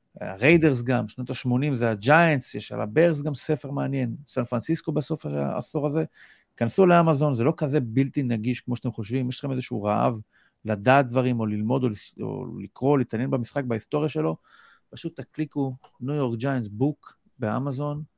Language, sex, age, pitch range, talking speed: Hebrew, male, 40-59, 115-150 Hz, 160 wpm